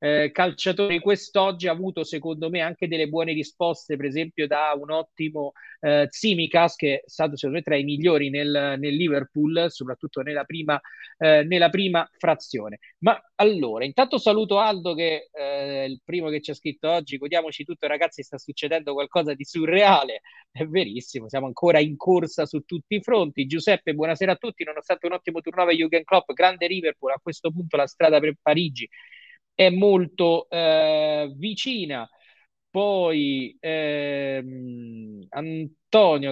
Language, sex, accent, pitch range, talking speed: Italian, male, native, 145-180 Hz, 155 wpm